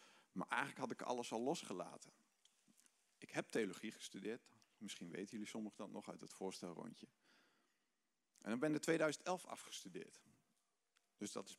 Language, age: Dutch, 50-69